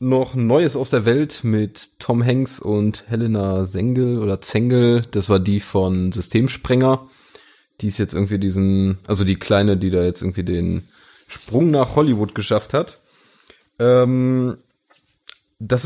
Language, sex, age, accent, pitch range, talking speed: German, male, 30-49, German, 95-115 Hz, 140 wpm